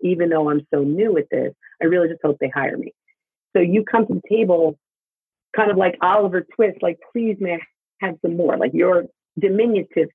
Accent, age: American, 40-59